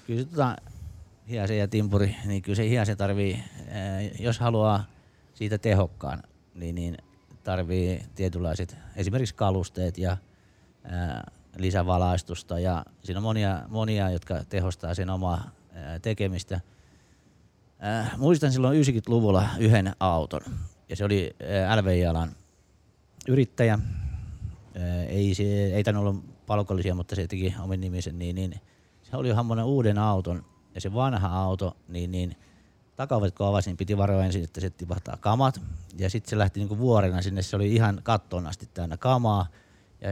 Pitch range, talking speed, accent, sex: 90-105 Hz, 130 wpm, native, male